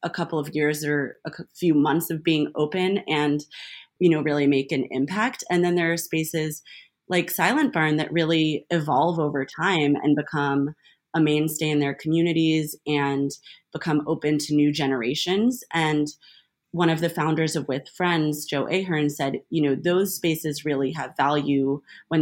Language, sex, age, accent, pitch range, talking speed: English, female, 20-39, American, 145-165 Hz, 170 wpm